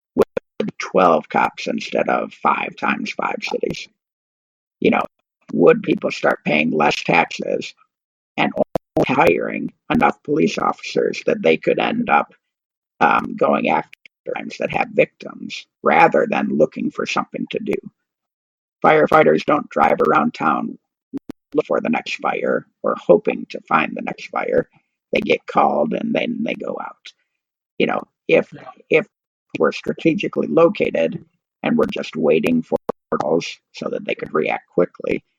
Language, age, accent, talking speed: English, 50-69, American, 140 wpm